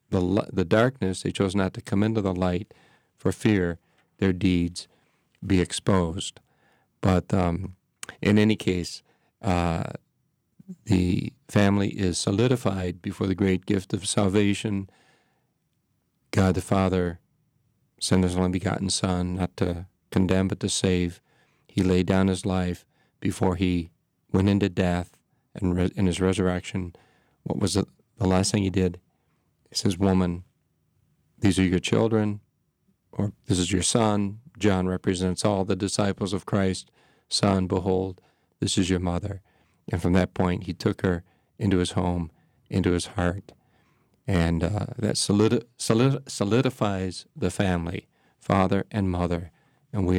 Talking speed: 140 wpm